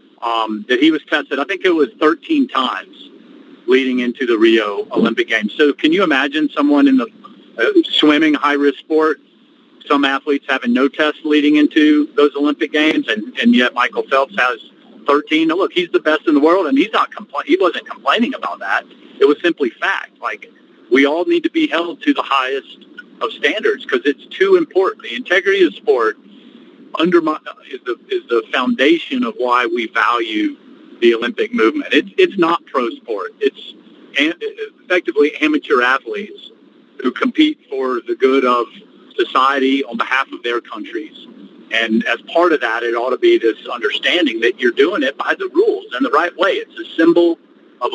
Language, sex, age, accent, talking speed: English, male, 50-69, American, 185 wpm